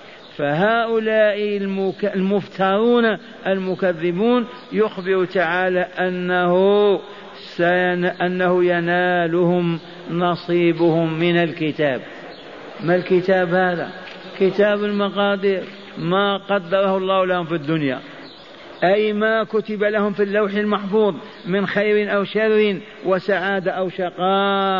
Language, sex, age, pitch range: Arabic, male, 50-69, 180-210 Hz